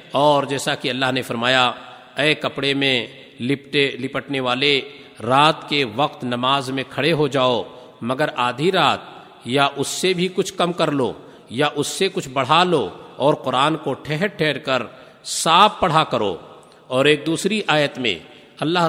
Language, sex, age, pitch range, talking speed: Urdu, male, 50-69, 135-175 Hz, 165 wpm